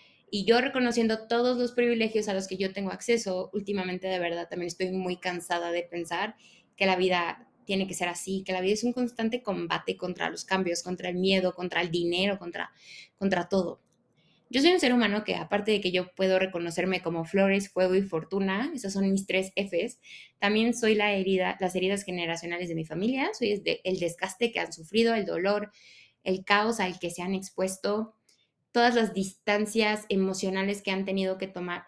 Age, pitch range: 20-39, 185-220 Hz